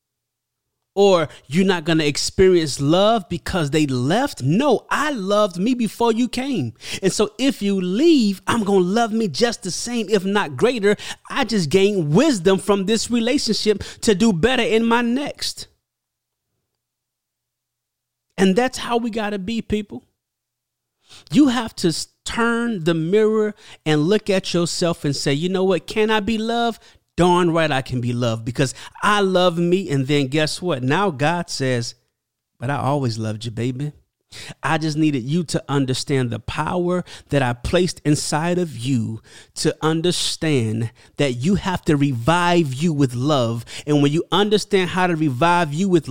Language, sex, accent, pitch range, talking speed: English, male, American, 140-195 Hz, 170 wpm